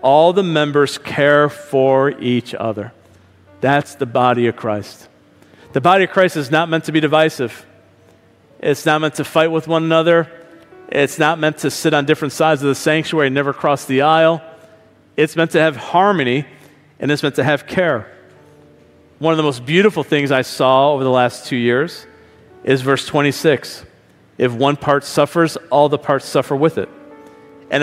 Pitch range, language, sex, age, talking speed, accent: 135-165 Hz, English, male, 40-59, 180 wpm, American